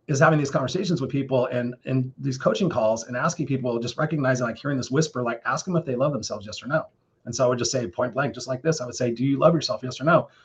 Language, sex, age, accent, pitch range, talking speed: English, male, 30-49, American, 125-150 Hz, 285 wpm